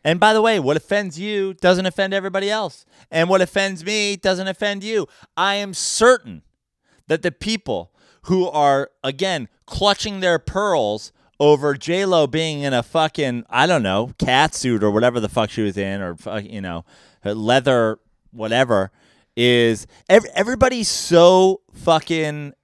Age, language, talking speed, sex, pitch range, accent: 30-49, English, 150 wpm, male, 145-205 Hz, American